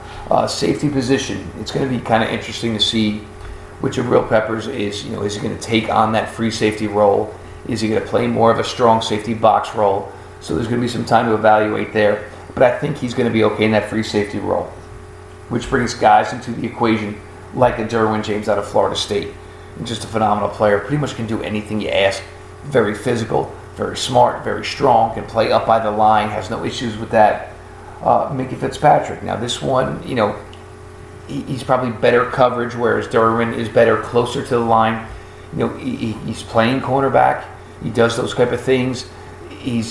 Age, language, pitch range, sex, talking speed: 40-59, English, 105-120 Hz, male, 210 wpm